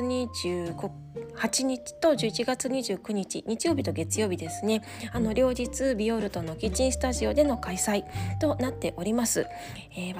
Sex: female